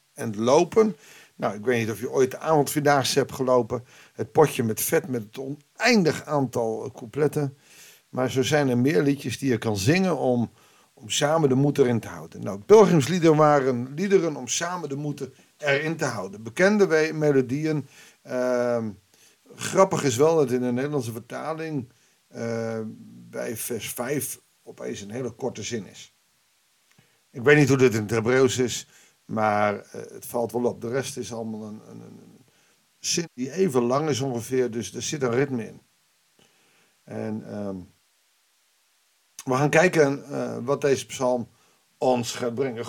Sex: male